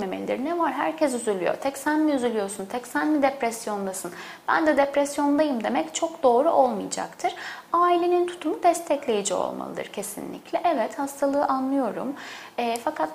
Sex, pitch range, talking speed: female, 245-325 Hz, 130 wpm